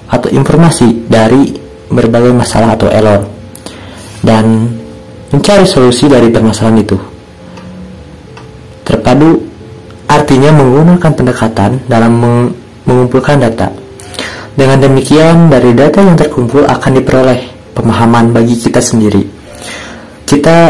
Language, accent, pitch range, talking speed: Indonesian, native, 105-135 Hz, 100 wpm